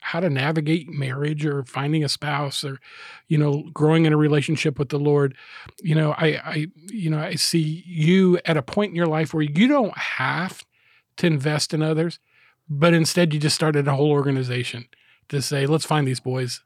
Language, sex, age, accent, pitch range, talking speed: English, male, 40-59, American, 145-170 Hz, 200 wpm